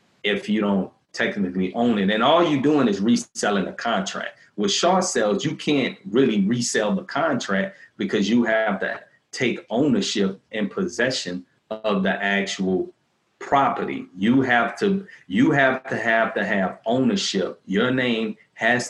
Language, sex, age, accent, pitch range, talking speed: English, male, 30-49, American, 100-135 Hz, 150 wpm